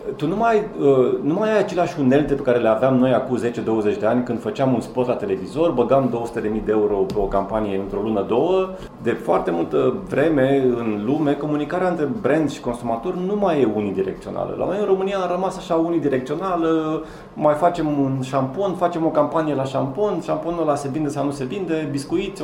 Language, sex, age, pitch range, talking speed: Romanian, male, 30-49, 120-160 Hz, 195 wpm